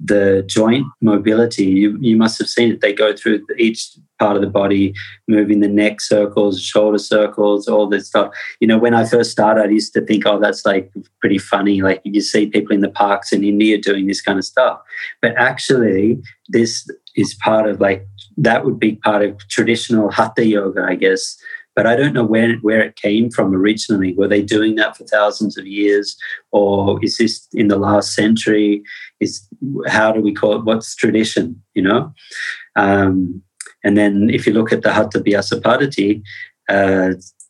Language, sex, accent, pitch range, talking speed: English, male, Australian, 100-110 Hz, 190 wpm